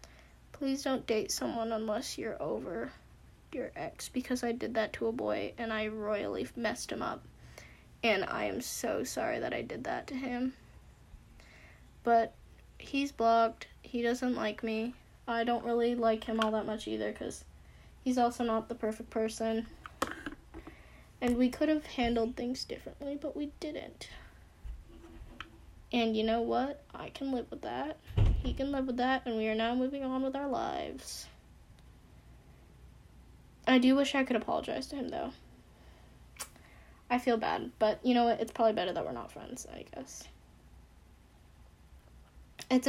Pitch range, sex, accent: 220-260 Hz, female, American